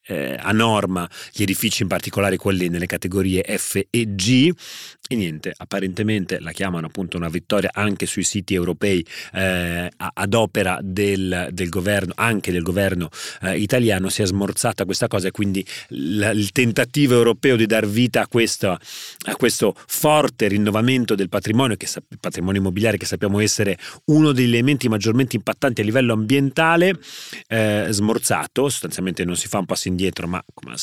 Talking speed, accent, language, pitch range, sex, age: 165 wpm, native, Italian, 95-115 Hz, male, 30-49